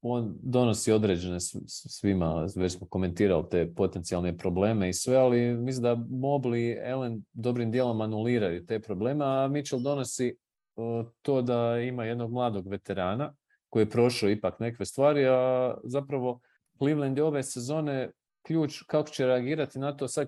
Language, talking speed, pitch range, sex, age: English, 150 wpm, 105-130 Hz, male, 40-59